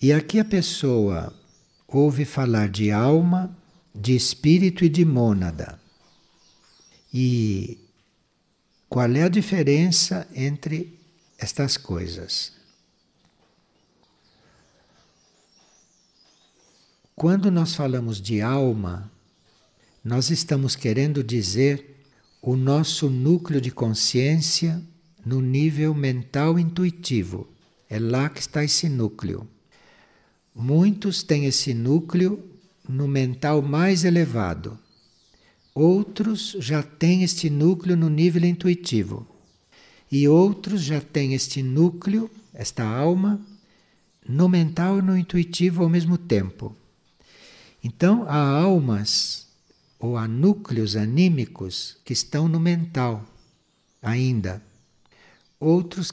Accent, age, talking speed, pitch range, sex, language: Brazilian, 60-79, 95 wpm, 120-175 Hz, male, English